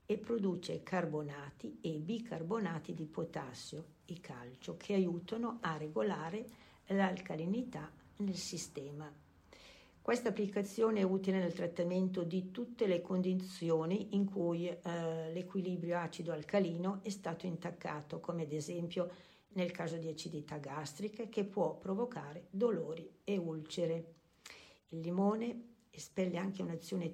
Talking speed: 115 wpm